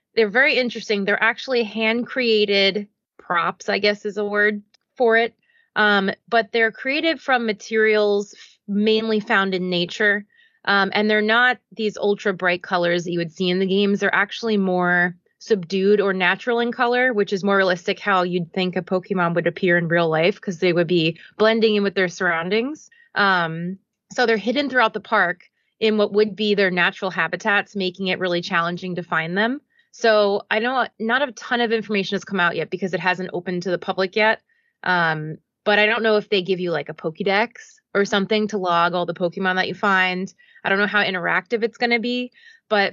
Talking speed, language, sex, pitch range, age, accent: 200 wpm, English, female, 185-225 Hz, 20-39, American